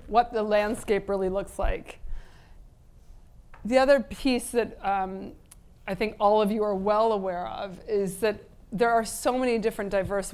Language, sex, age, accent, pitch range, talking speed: English, female, 30-49, American, 190-215 Hz, 165 wpm